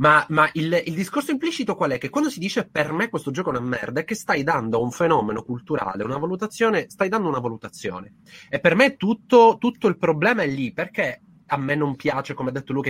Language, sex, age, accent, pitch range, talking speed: Italian, male, 30-49, native, 120-170 Hz, 235 wpm